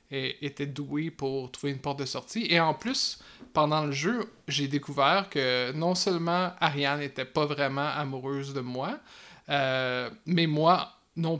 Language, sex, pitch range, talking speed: French, male, 145-180 Hz, 165 wpm